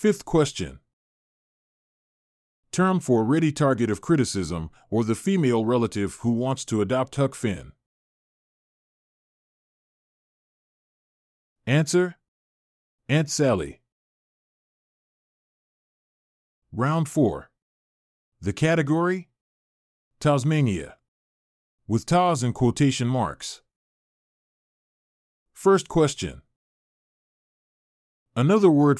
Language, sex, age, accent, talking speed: English, male, 40-59, American, 70 wpm